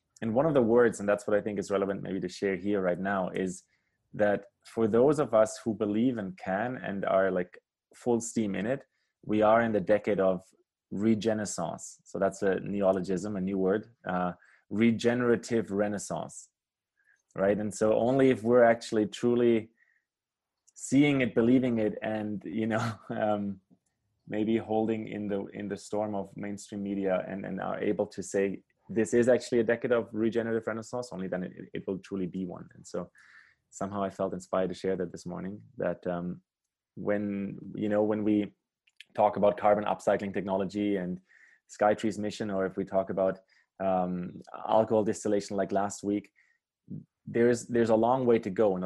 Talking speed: 180 wpm